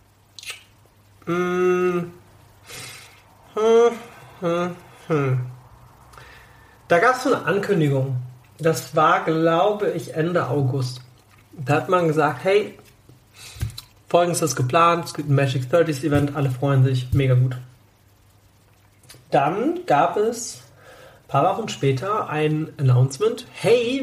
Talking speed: 100 wpm